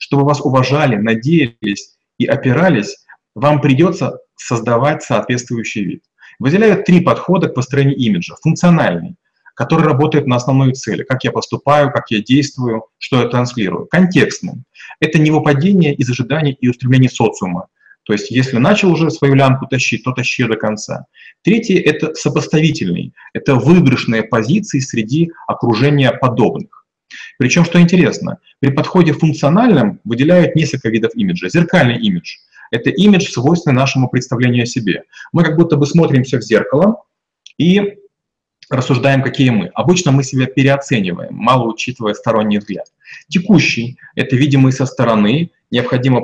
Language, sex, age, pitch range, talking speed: Russian, male, 30-49, 125-160 Hz, 145 wpm